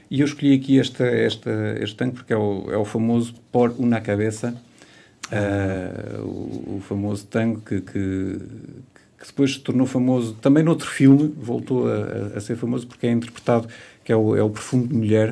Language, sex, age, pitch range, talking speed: Portuguese, male, 50-69, 105-125 Hz, 190 wpm